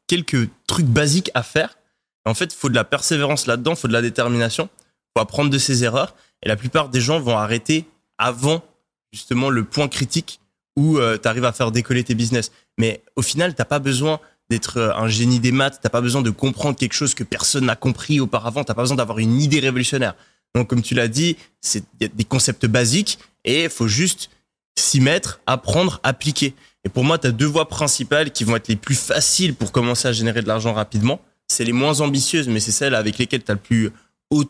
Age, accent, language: 20-39, French, French